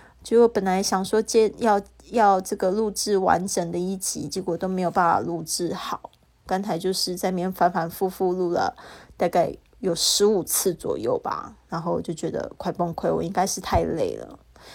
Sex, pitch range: female, 180-210 Hz